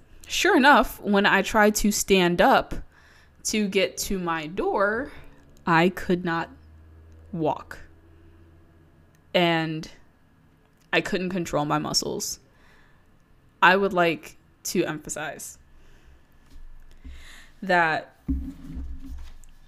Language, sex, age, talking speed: English, female, 10-29, 90 wpm